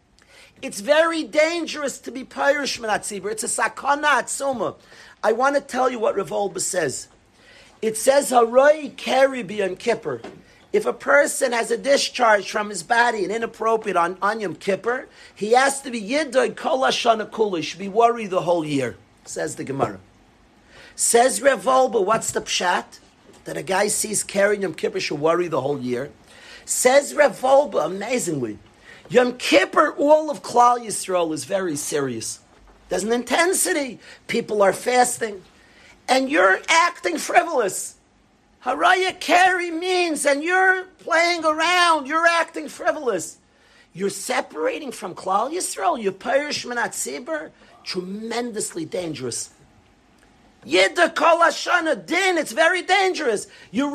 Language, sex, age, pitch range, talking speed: English, male, 50-69, 205-310 Hz, 130 wpm